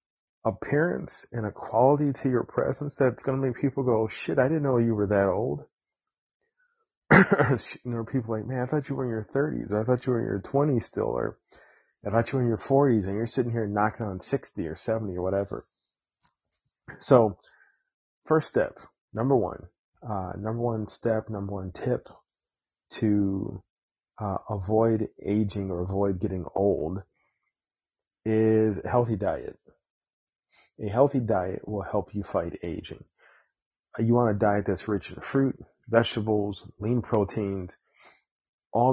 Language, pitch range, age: English, 100-120 Hz, 30-49